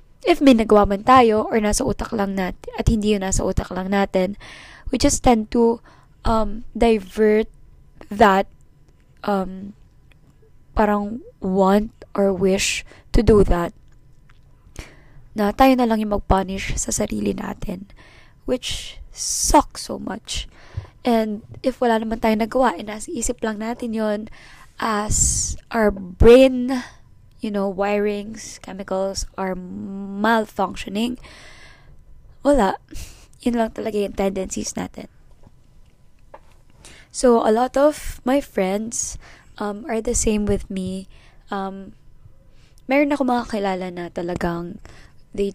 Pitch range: 190-230 Hz